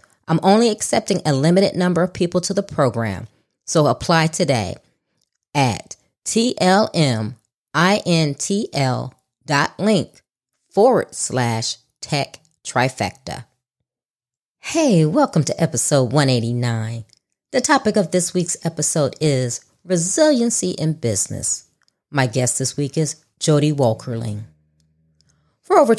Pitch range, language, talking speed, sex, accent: 125-185 Hz, English, 125 wpm, female, American